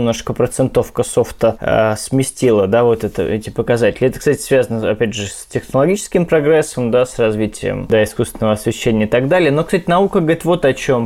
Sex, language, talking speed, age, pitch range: male, Russian, 175 wpm, 20-39, 120-150 Hz